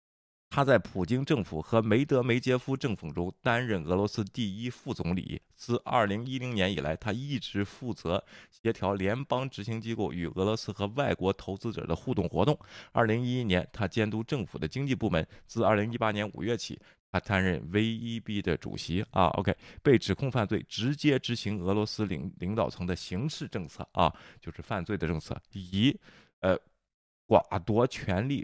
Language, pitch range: Chinese, 90-125 Hz